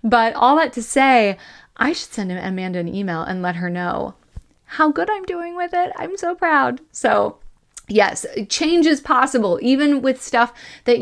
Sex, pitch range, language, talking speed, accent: female, 180-250 Hz, English, 180 wpm, American